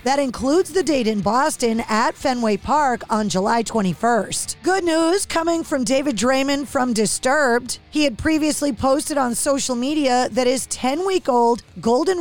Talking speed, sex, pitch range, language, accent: 160 wpm, female, 230-285 Hz, English, American